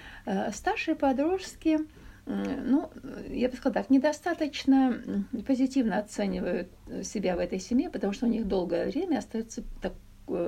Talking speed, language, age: 125 wpm, Russian, 50-69